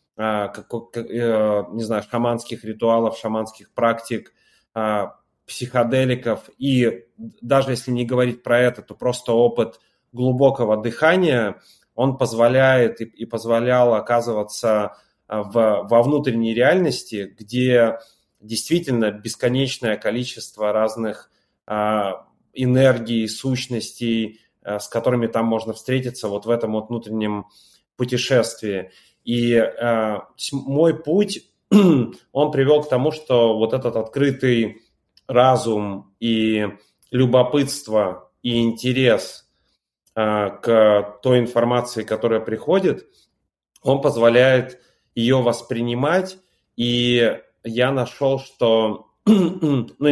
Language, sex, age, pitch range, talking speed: Russian, male, 30-49, 110-125 Hz, 95 wpm